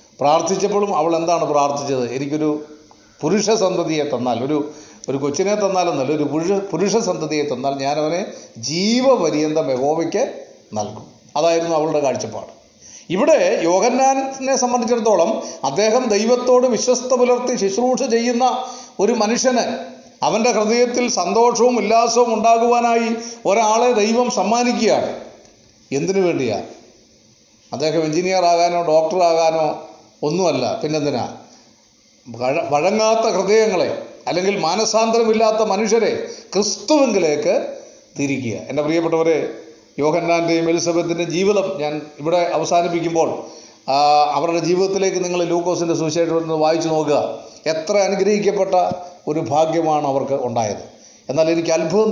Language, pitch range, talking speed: Malayalam, 155-220 Hz, 95 wpm